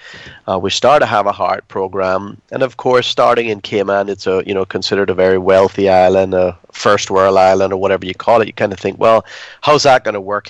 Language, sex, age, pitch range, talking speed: English, male, 30-49, 95-105 Hz, 240 wpm